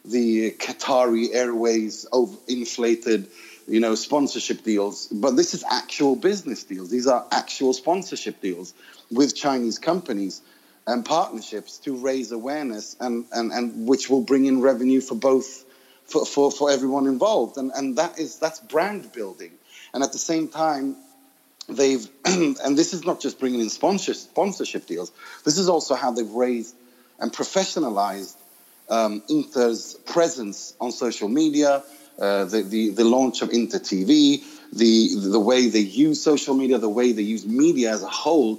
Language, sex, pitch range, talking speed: English, male, 115-160 Hz, 160 wpm